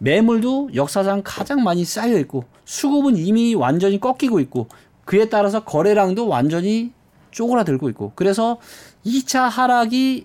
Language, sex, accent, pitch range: Korean, male, native, 145-230 Hz